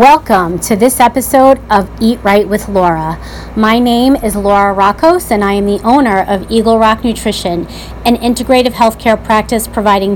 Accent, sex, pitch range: American, female, 210-250 Hz